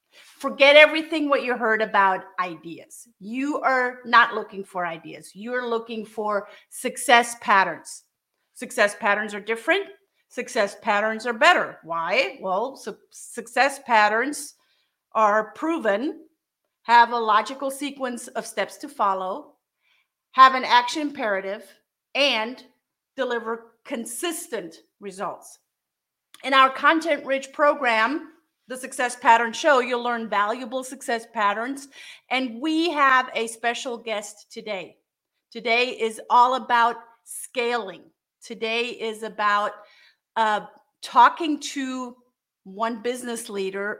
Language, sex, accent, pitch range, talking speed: English, female, American, 215-275 Hz, 110 wpm